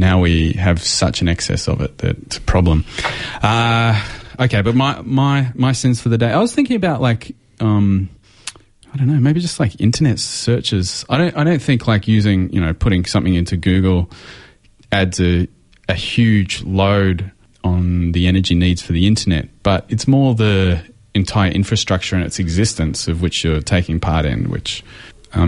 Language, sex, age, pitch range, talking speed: English, male, 30-49, 90-115 Hz, 185 wpm